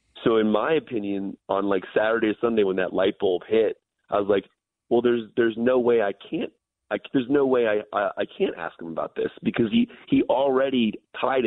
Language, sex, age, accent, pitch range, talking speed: English, male, 30-49, American, 100-145 Hz, 215 wpm